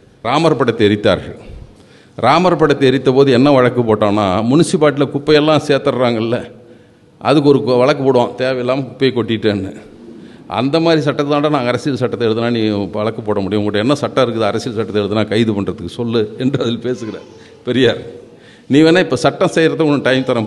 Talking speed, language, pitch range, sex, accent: 160 wpm, Tamil, 110-140 Hz, male, native